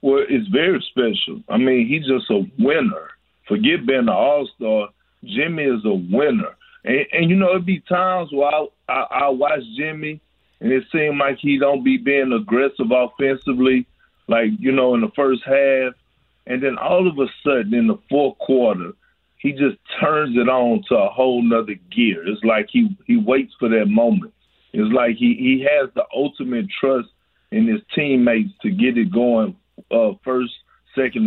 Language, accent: English, American